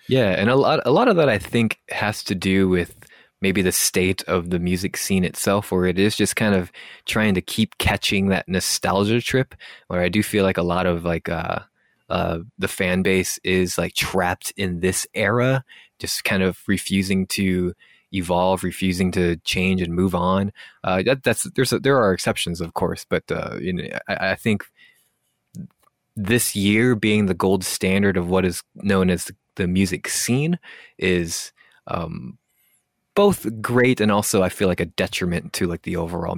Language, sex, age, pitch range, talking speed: English, male, 20-39, 90-105 Hz, 190 wpm